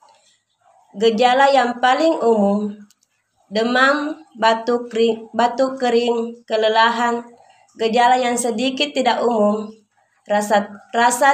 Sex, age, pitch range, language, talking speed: female, 20-39, 210-240 Hz, Indonesian, 90 wpm